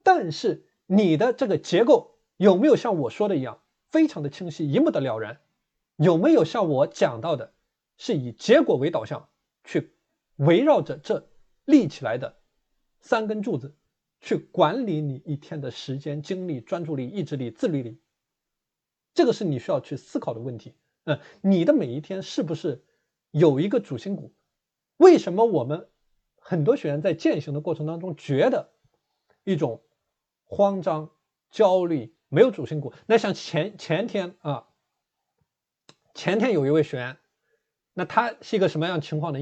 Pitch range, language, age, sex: 145-195 Hz, Chinese, 20-39, male